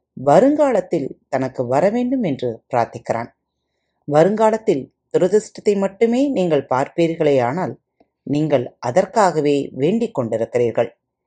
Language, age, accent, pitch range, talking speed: Tamil, 30-49, native, 135-210 Hz, 85 wpm